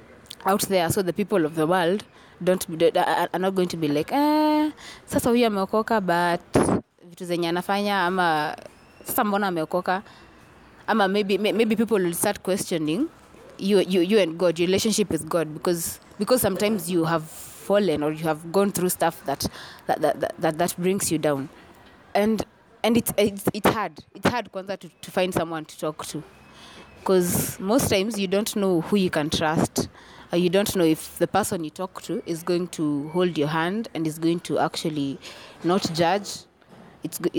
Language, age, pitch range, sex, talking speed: English, 20-39, 165-205 Hz, female, 180 wpm